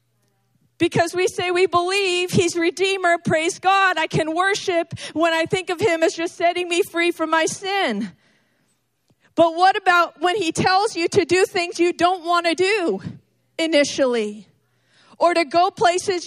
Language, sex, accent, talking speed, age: English, female, American, 165 wpm, 50-69